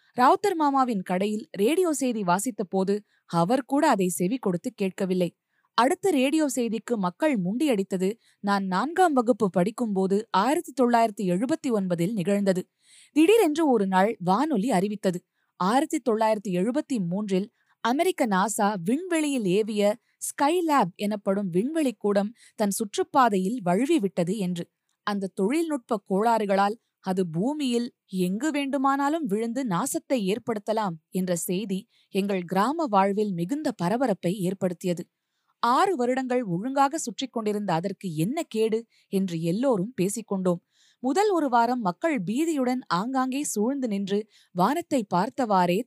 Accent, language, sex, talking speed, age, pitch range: native, Tamil, female, 115 wpm, 20-39, 190-265 Hz